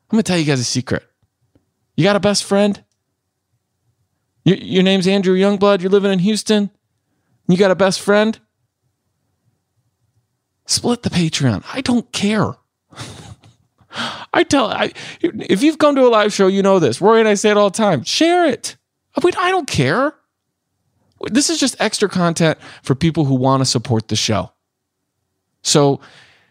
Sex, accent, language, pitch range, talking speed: male, American, English, 105-160 Hz, 170 wpm